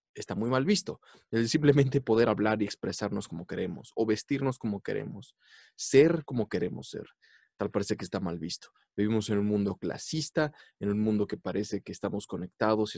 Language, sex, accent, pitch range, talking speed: English, male, Mexican, 100-125 Hz, 185 wpm